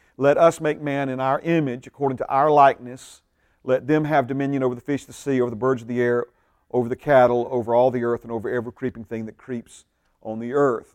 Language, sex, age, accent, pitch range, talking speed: English, male, 40-59, American, 120-145 Hz, 240 wpm